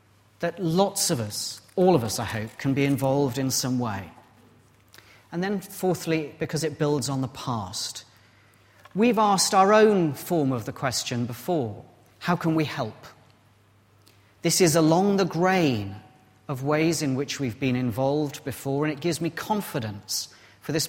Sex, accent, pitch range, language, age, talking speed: male, British, 105-155 Hz, English, 40-59, 165 wpm